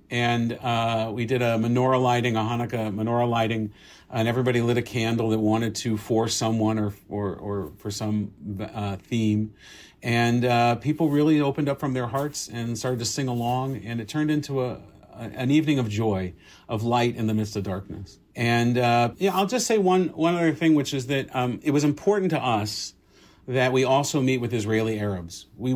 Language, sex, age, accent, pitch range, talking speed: English, male, 50-69, American, 105-130 Hz, 200 wpm